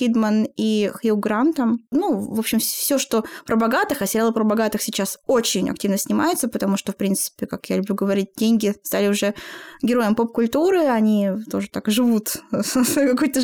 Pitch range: 220-280 Hz